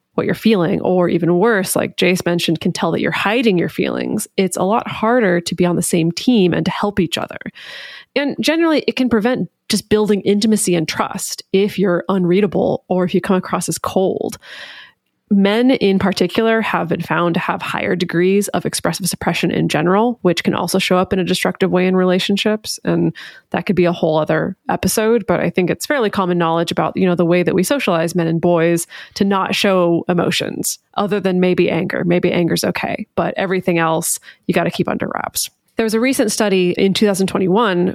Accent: American